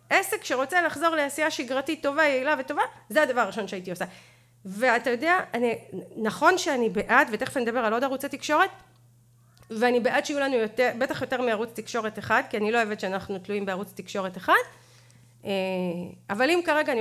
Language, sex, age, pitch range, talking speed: Hebrew, female, 40-59, 195-280 Hz, 170 wpm